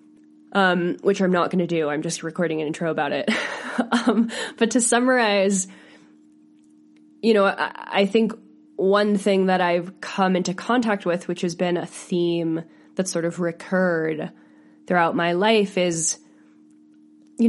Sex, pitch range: female, 150-185 Hz